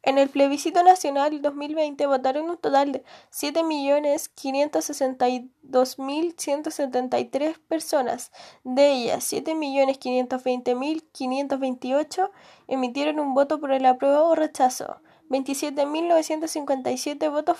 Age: 10-29